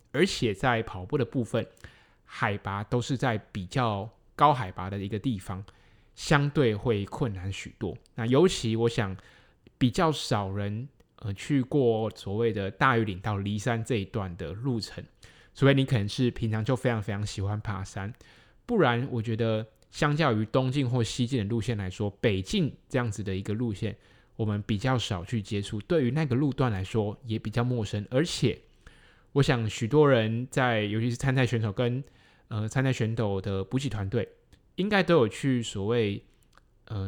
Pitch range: 105-130 Hz